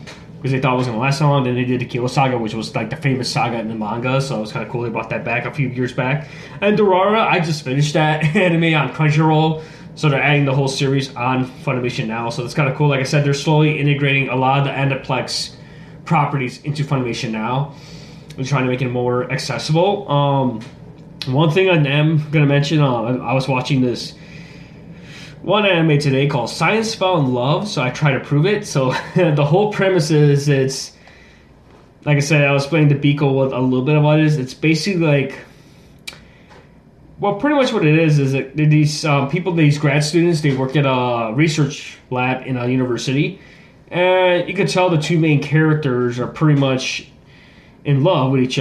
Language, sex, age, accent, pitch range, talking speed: English, male, 20-39, American, 130-155 Hz, 210 wpm